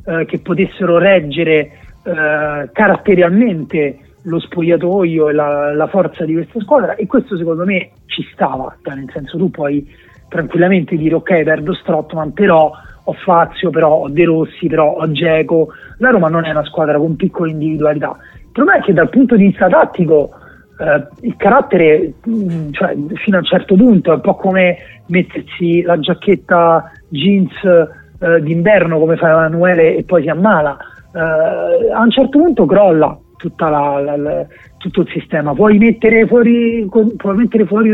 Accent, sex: native, male